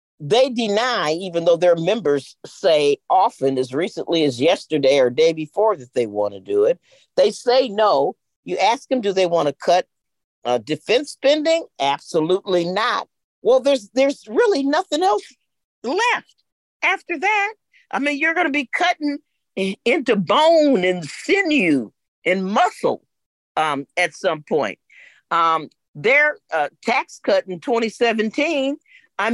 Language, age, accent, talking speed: English, 50-69, American, 140 wpm